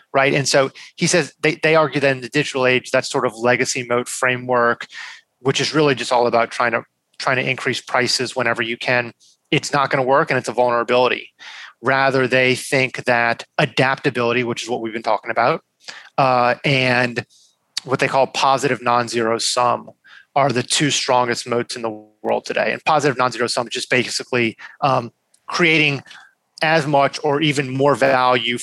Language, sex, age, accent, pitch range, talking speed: English, male, 30-49, American, 120-145 Hz, 180 wpm